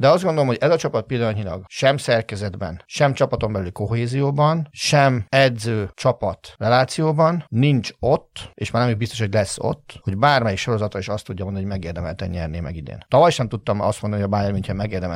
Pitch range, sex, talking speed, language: 95-120 Hz, male, 200 wpm, Hungarian